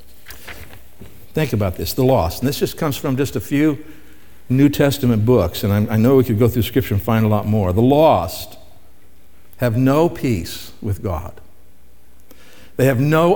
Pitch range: 95-140 Hz